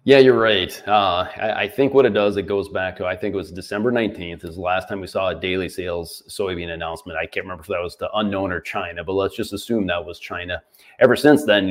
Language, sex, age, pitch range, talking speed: English, male, 30-49, 95-105 Hz, 265 wpm